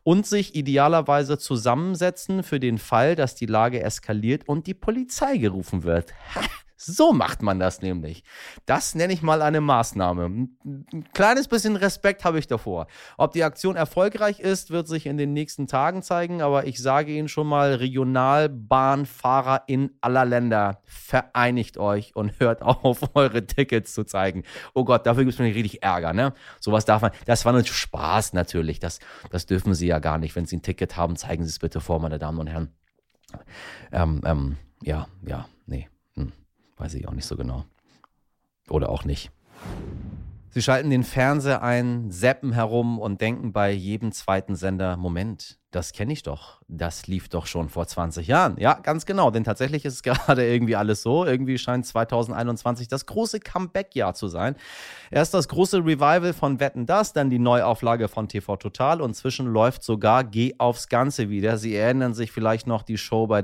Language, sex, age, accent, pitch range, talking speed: German, male, 30-49, German, 95-140 Hz, 180 wpm